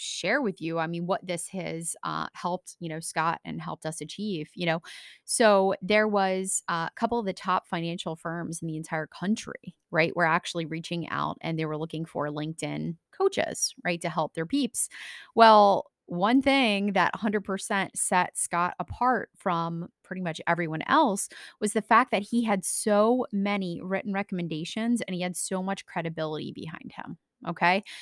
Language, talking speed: English, 175 wpm